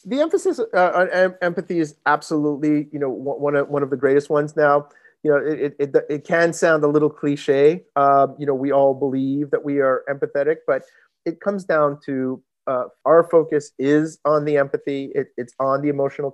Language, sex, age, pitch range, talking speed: English, male, 30-49, 130-155 Hz, 185 wpm